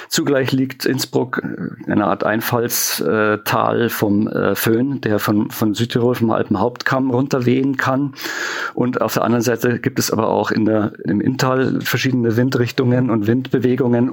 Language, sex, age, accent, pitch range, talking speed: German, male, 50-69, German, 110-130 Hz, 140 wpm